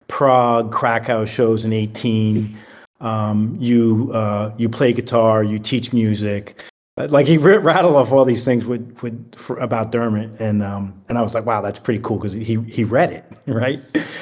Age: 40-59